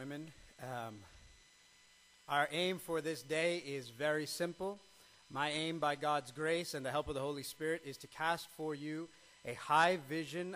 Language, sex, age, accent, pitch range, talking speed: English, male, 40-59, American, 140-170 Hz, 165 wpm